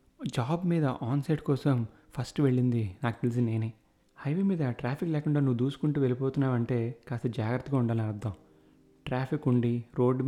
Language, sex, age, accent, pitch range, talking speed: Telugu, male, 30-49, native, 115-130 Hz, 145 wpm